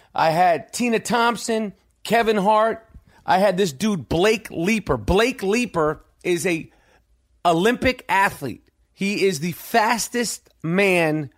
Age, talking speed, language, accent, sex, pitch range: 40-59, 120 wpm, English, American, male, 170-225 Hz